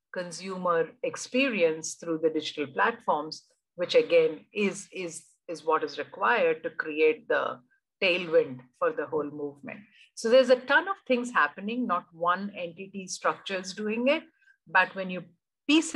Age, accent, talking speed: 50-69, Indian, 145 wpm